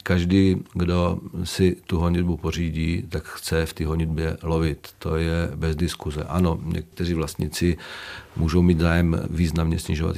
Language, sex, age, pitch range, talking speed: Czech, male, 40-59, 80-95 Hz, 140 wpm